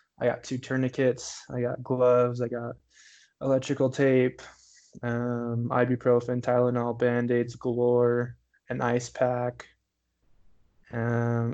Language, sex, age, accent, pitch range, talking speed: English, male, 20-39, American, 120-130 Hz, 105 wpm